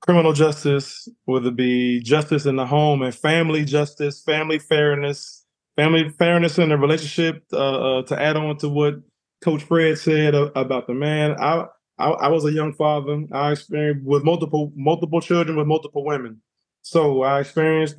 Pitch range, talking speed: 135-155 Hz, 170 wpm